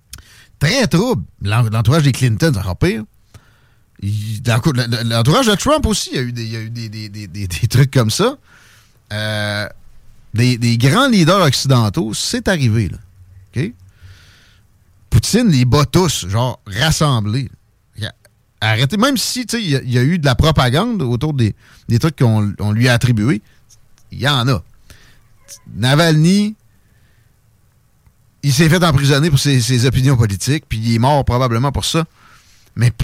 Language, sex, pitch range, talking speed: French, male, 105-145 Hz, 165 wpm